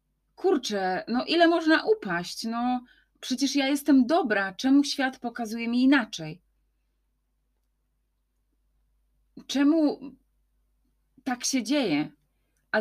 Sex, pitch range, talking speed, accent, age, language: female, 195-255 Hz, 95 wpm, native, 30-49, Polish